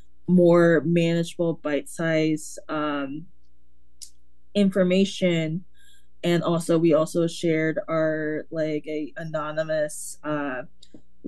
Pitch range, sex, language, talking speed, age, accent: 155-175 Hz, female, English, 70 wpm, 20-39, American